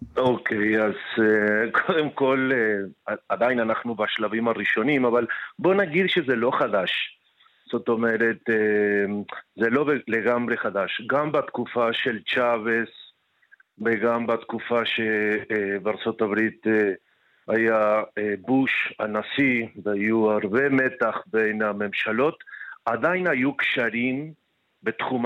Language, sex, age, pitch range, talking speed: Hebrew, male, 50-69, 110-125 Hz, 95 wpm